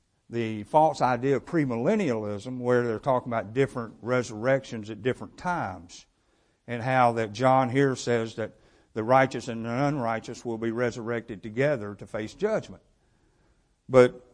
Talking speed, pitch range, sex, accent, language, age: 140 wpm, 120-160 Hz, male, American, English, 50-69